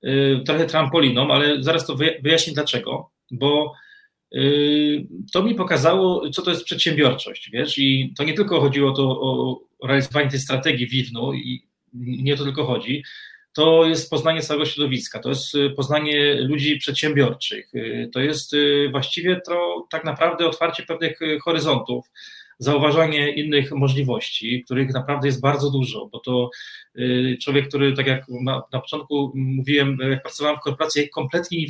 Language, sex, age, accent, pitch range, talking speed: Polish, male, 30-49, native, 135-165 Hz, 140 wpm